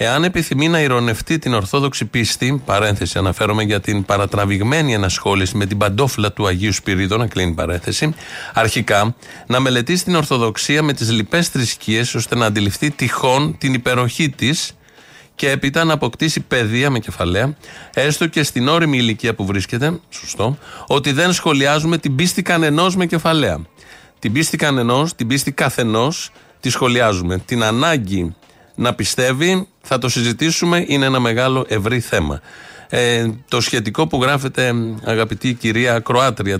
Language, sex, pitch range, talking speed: Greek, male, 110-145 Hz, 145 wpm